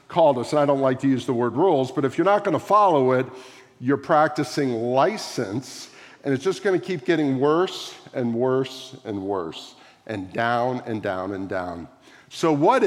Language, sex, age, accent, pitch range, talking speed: English, male, 50-69, American, 125-165 Hz, 195 wpm